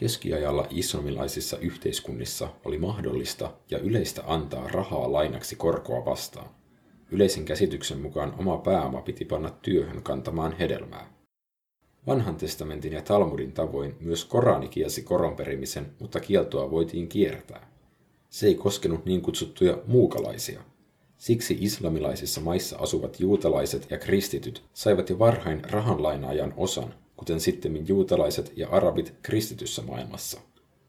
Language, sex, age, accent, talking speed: Finnish, male, 50-69, native, 120 wpm